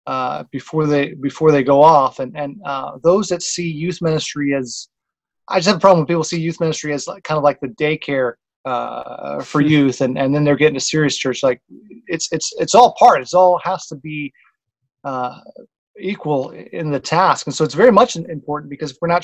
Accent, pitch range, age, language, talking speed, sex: American, 140-175 Hz, 30-49, English, 220 wpm, male